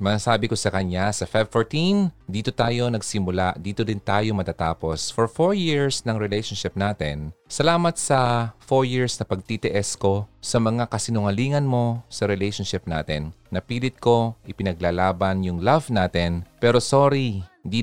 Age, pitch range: 30-49, 95-125 Hz